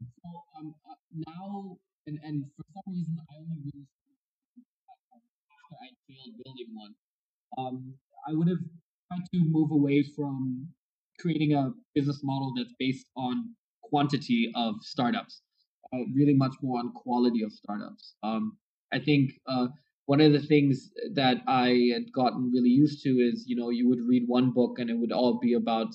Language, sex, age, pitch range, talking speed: English, male, 20-39, 125-160 Hz, 170 wpm